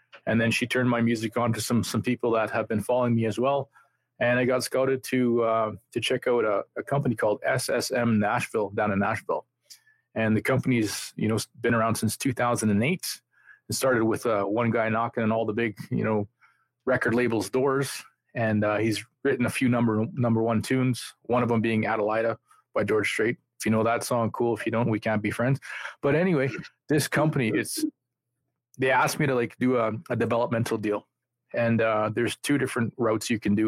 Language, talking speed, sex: English, 215 wpm, male